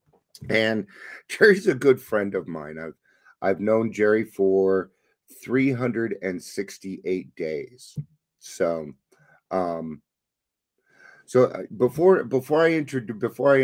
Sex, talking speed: male, 100 wpm